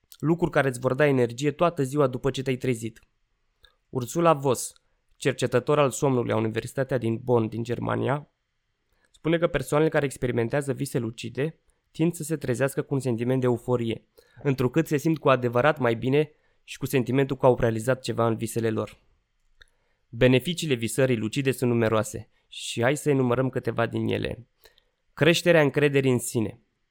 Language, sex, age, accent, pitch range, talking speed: Romanian, male, 20-39, native, 120-145 Hz, 160 wpm